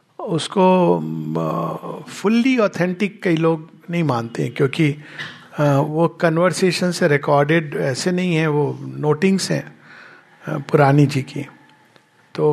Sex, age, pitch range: male, 60-79, 140-180 Hz